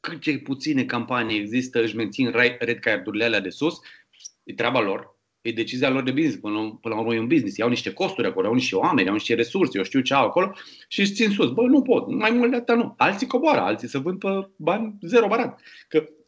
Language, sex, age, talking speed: Romanian, male, 30-49, 225 wpm